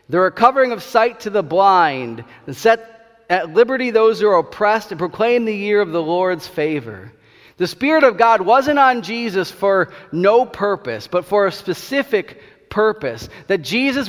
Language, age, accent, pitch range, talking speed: English, 40-59, American, 170-225 Hz, 170 wpm